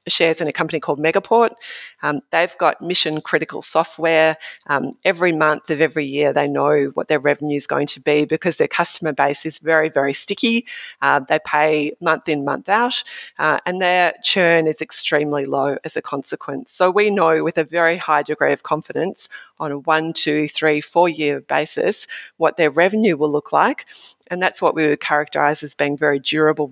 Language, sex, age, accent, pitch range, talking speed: English, female, 30-49, Australian, 145-175 Hz, 190 wpm